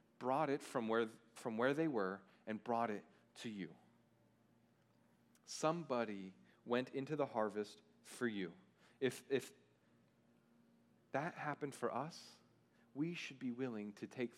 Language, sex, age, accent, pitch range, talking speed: English, male, 40-59, American, 110-130 Hz, 135 wpm